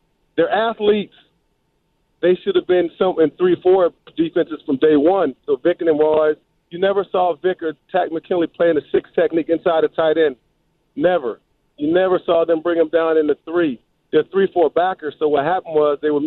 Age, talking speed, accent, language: 40-59, 195 wpm, American, English